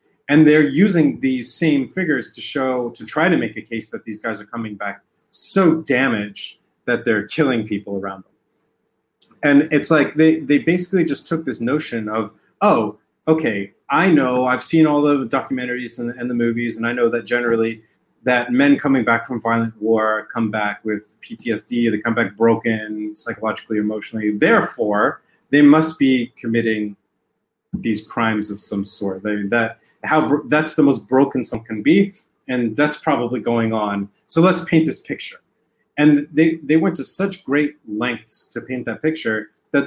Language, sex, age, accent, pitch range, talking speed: English, male, 30-49, American, 110-145 Hz, 180 wpm